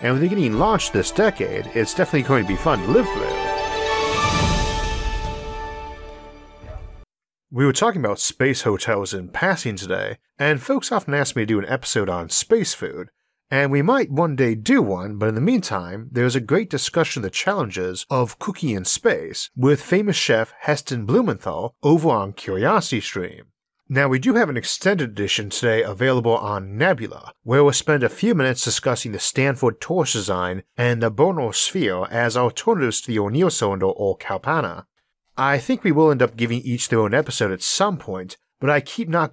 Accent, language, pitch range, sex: American, English, 105-150 Hz, male